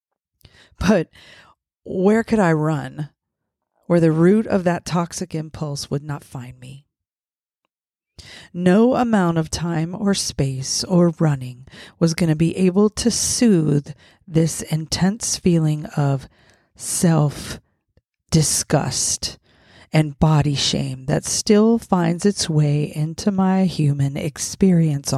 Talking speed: 115 wpm